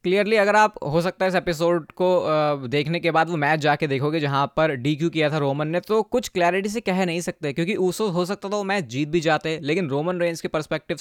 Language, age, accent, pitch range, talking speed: Hindi, 20-39, native, 145-185 Hz, 250 wpm